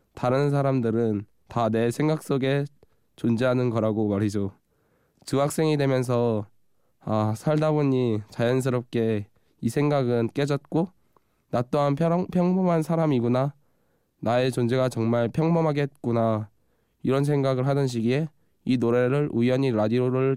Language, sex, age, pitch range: Korean, male, 20-39, 115-145 Hz